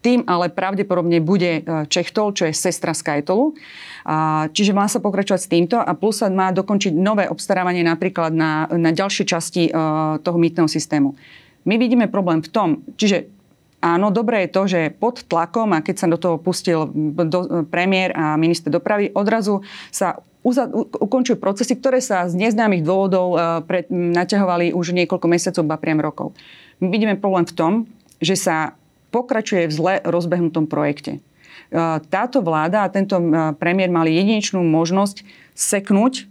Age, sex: 30-49, female